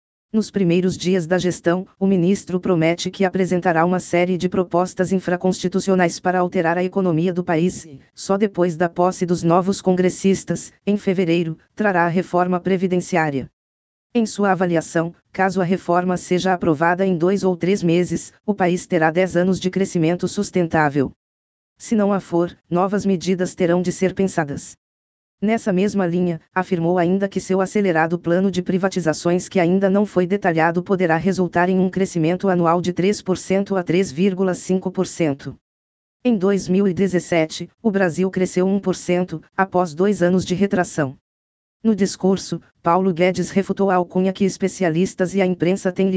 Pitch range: 170-190 Hz